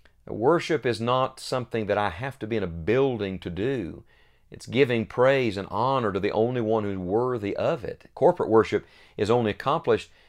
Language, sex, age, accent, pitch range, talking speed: English, male, 40-59, American, 95-125 Hz, 185 wpm